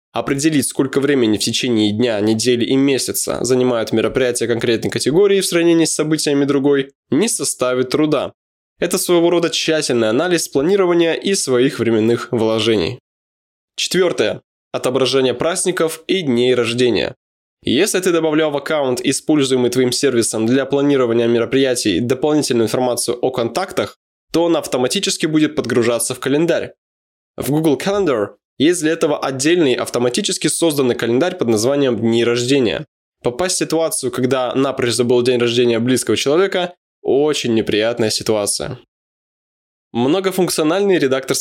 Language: Russian